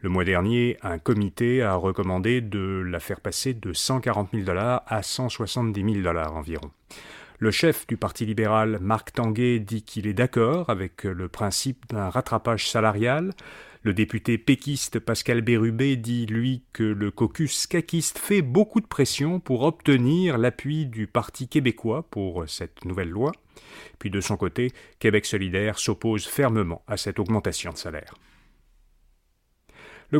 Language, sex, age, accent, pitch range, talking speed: French, male, 40-59, French, 105-135 Hz, 150 wpm